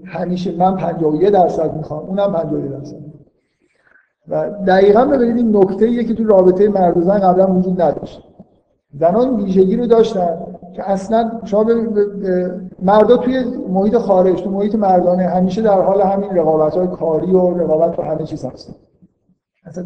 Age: 50-69